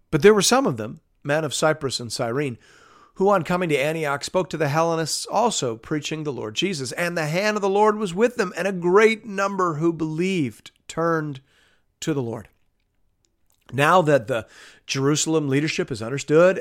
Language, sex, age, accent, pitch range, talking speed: English, male, 50-69, American, 115-165 Hz, 185 wpm